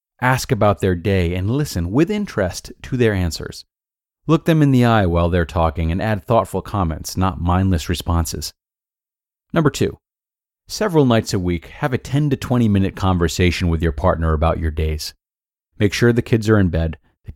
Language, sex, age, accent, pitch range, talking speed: English, male, 30-49, American, 85-115 Hz, 185 wpm